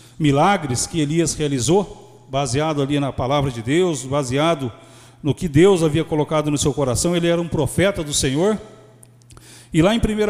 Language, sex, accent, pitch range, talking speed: Portuguese, male, Brazilian, 145-220 Hz, 170 wpm